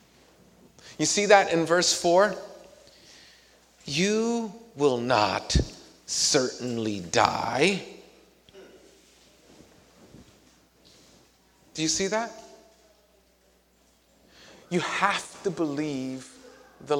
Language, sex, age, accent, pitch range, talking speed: English, male, 40-59, American, 150-210 Hz, 70 wpm